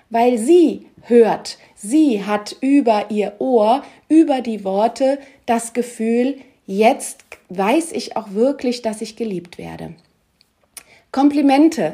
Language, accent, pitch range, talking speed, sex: German, German, 205-265 Hz, 115 wpm, female